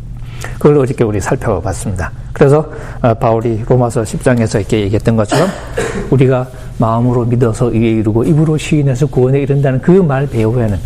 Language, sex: Korean, male